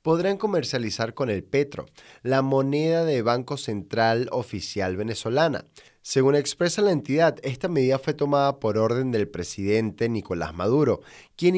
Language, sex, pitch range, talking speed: Spanish, male, 110-155 Hz, 140 wpm